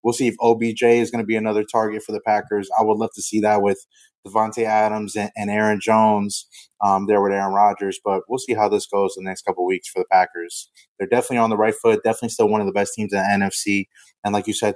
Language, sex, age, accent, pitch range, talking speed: English, male, 20-39, American, 100-115 Hz, 270 wpm